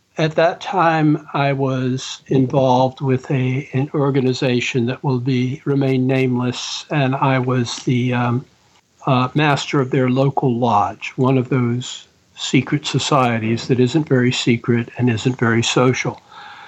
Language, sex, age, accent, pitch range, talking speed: English, male, 60-79, American, 125-150 Hz, 140 wpm